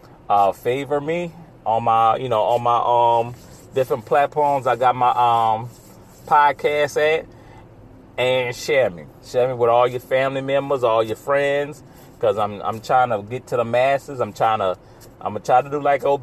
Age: 30-49